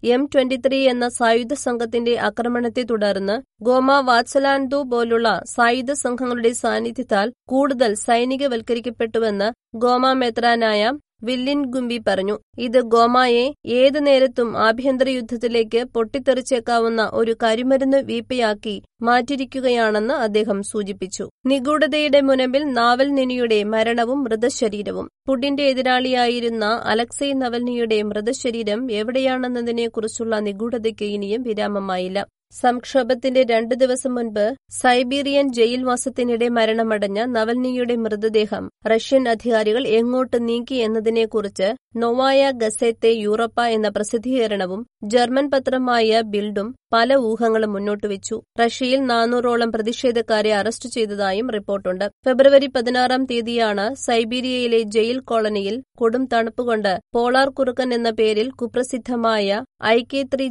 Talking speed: 90 wpm